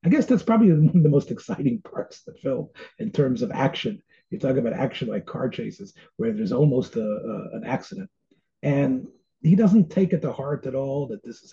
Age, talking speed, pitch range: 30-49, 225 wpm, 135-205 Hz